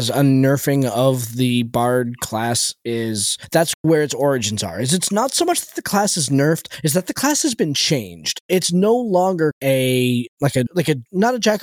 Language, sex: English, male